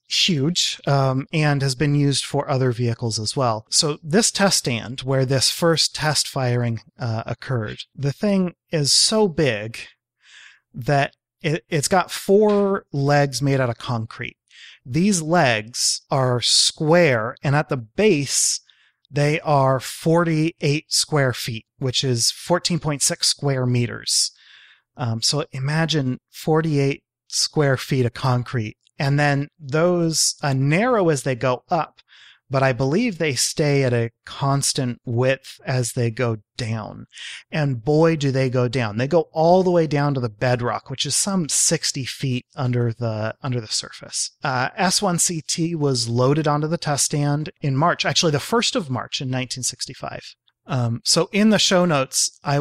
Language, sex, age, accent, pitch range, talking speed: English, male, 30-49, American, 125-160 Hz, 150 wpm